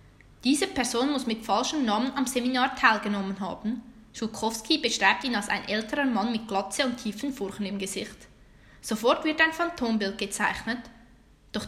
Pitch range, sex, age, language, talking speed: 210-270 Hz, female, 10-29, German, 155 wpm